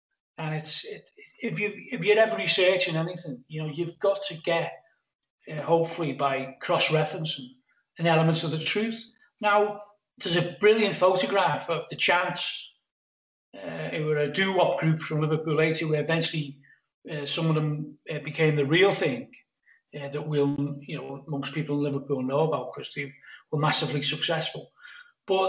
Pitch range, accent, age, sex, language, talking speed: 150-195 Hz, British, 40-59, male, English, 165 wpm